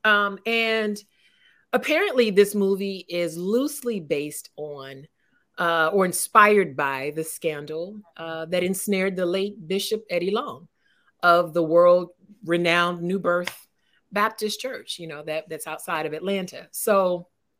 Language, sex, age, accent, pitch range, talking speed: English, female, 30-49, American, 160-215 Hz, 135 wpm